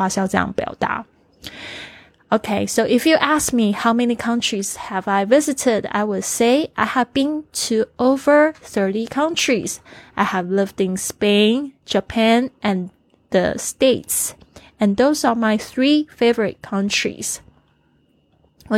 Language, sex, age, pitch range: Chinese, female, 20-39, 195-240 Hz